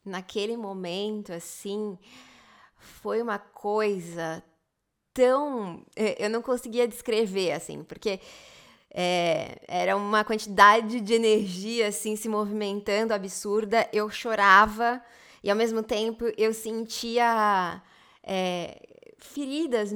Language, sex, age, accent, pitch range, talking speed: Portuguese, female, 20-39, Brazilian, 195-235 Hz, 95 wpm